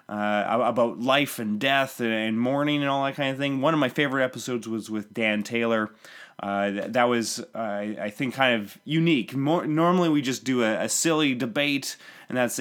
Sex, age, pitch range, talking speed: male, 20-39, 110-140 Hz, 200 wpm